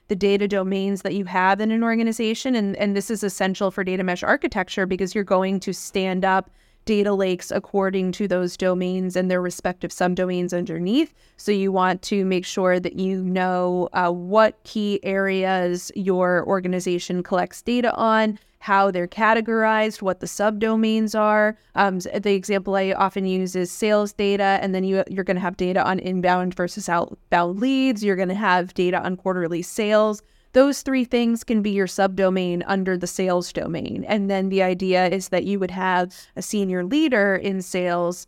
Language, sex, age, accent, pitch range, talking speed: English, female, 20-39, American, 180-205 Hz, 180 wpm